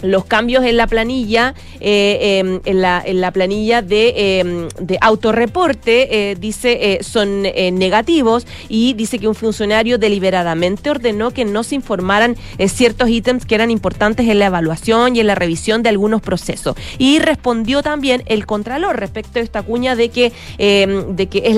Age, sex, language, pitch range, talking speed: 30-49, female, Spanish, 190-250 Hz, 165 wpm